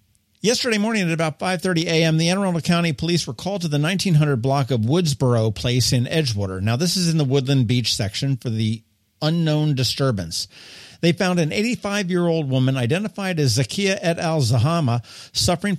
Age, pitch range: 50-69, 120-165 Hz